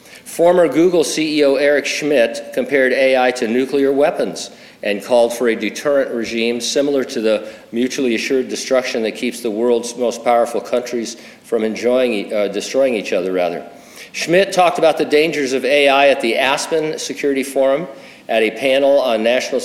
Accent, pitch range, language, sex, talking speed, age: American, 115-140 Hz, English, male, 160 wpm, 50-69